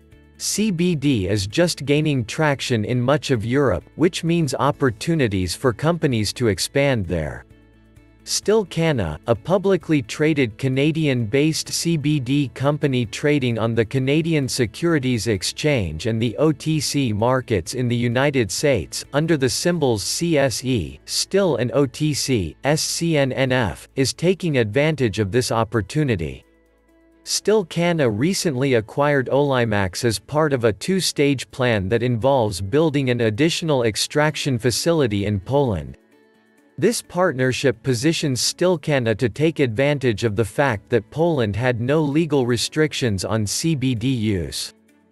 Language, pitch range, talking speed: English, 110-150 Hz, 120 wpm